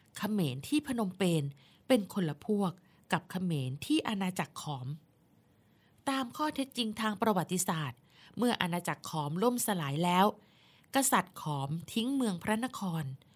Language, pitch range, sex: Thai, 155-205 Hz, female